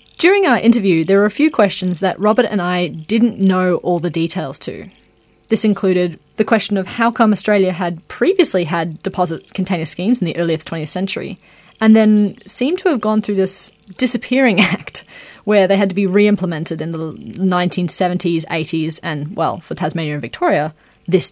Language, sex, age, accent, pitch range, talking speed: English, female, 20-39, Australian, 175-210 Hz, 180 wpm